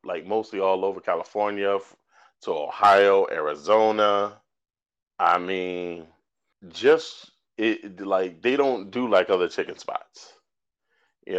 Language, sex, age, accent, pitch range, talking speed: English, male, 30-49, American, 90-110 Hz, 105 wpm